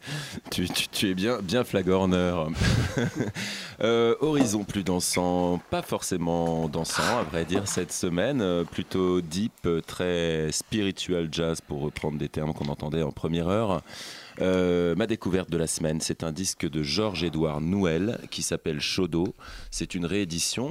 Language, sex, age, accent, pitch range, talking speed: French, male, 30-49, French, 80-90 Hz, 150 wpm